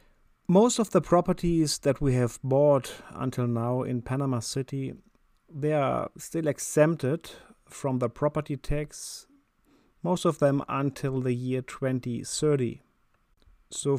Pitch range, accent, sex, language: 130-165 Hz, German, male, English